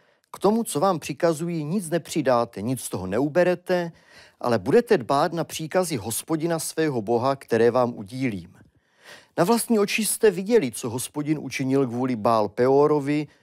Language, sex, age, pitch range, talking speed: Czech, male, 40-59, 120-160 Hz, 150 wpm